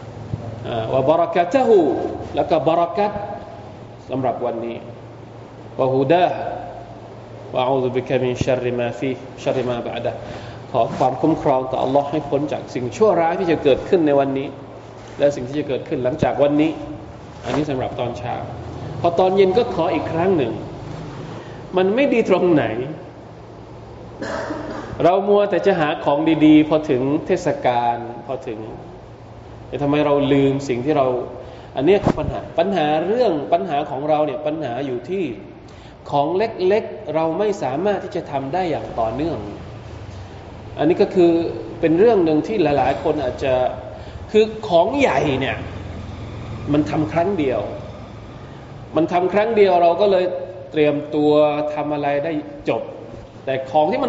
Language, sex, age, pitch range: Thai, male, 20-39, 120-170 Hz